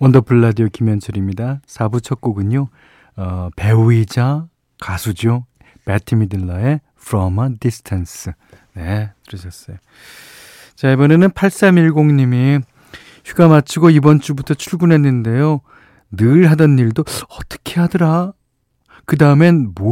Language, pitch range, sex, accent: Korean, 100-145 Hz, male, native